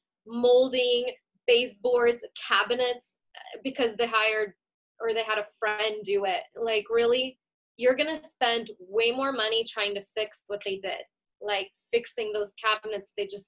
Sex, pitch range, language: female, 210-275 Hz, English